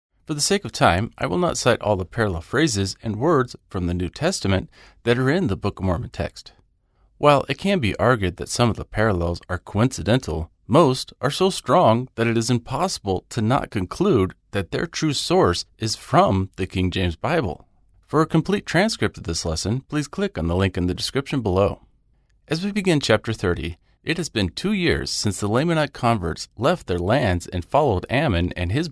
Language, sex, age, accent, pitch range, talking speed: English, male, 40-59, American, 90-130 Hz, 205 wpm